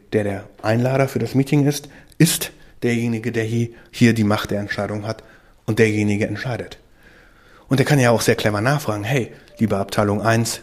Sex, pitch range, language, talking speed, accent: male, 105-135 Hz, German, 175 wpm, German